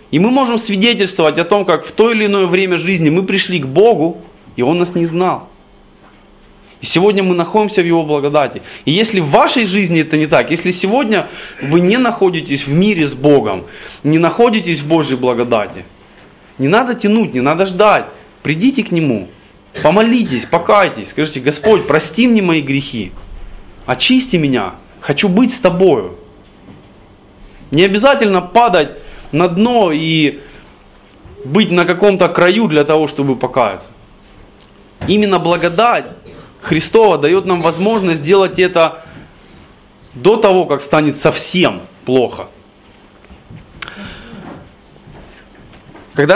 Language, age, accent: Russian, 20-39, native